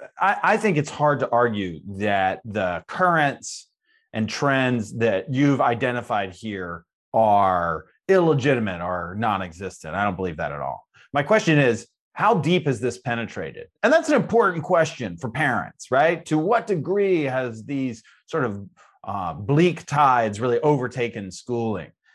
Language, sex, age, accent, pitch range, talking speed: English, male, 30-49, American, 120-175 Hz, 145 wpm